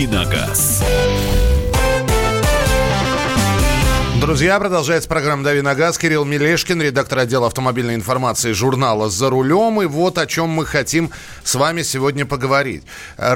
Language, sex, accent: Russian, male, native